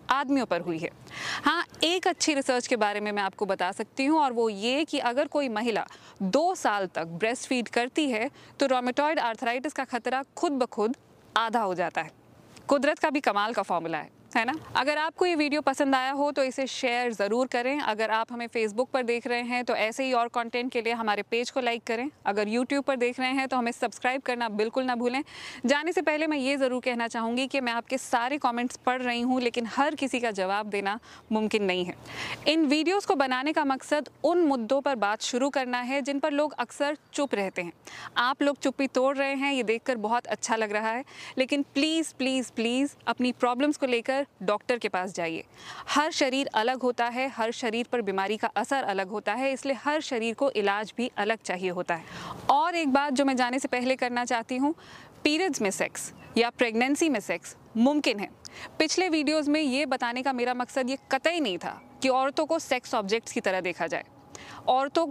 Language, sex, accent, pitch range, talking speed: Hindi, female, native, 230-280 Hz, 215 wpm